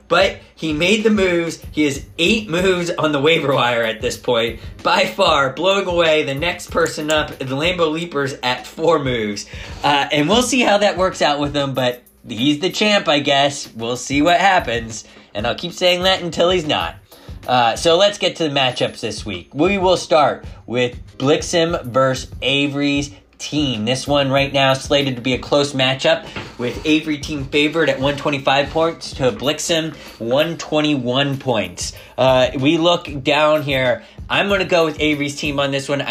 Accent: American